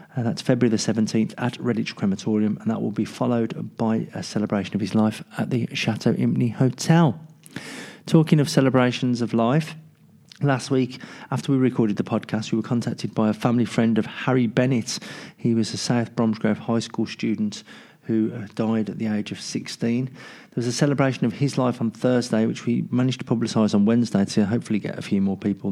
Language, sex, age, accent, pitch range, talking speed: English, male, 40-59, British, 110-130 Hz, 200 wpm